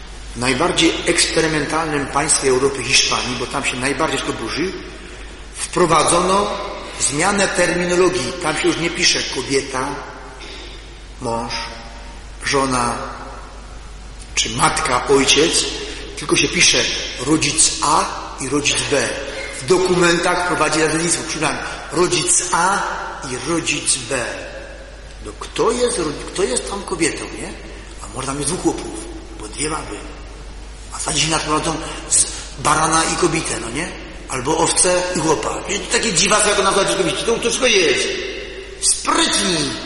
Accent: Polish